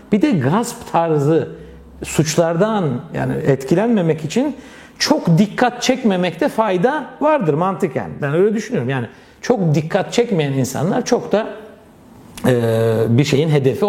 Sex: male